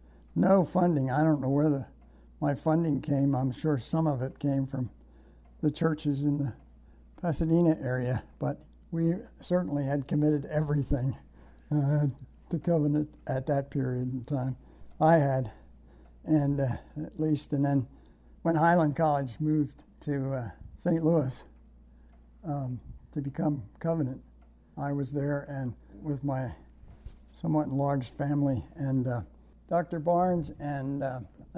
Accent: American